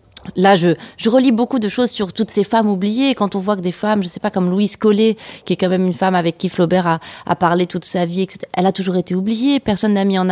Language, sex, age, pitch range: French, female, 30-49, 180-220 Hz